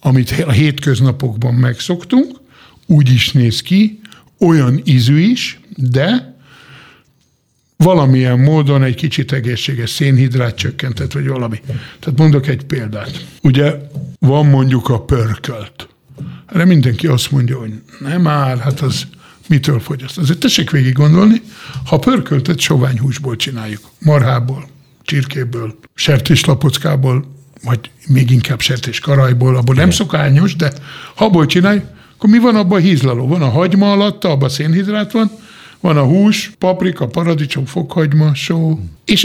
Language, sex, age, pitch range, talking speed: Hungarian, male, 60-79, 130-170 Hz, 130 wpm